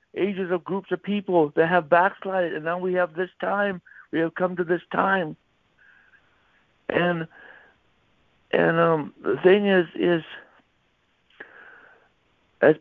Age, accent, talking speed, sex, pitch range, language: 60-79, American, 130 wpm, male, 170-205 Hz, English